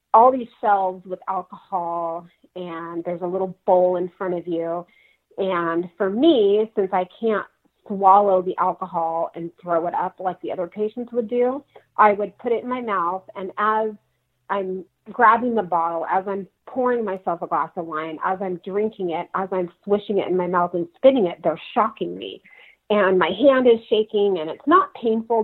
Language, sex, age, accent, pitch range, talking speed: English, female, 40-59, American, 175-215 Hz, 190 wpm